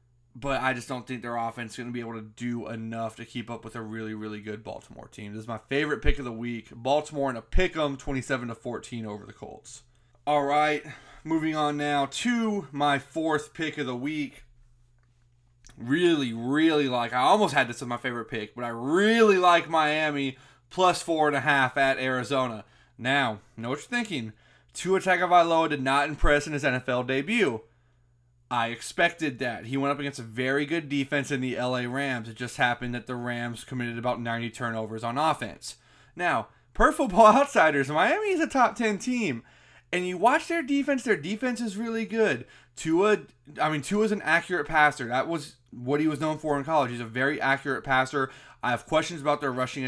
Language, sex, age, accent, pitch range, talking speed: English, male, 20-39, American, 120-155 Hz, 205 wpm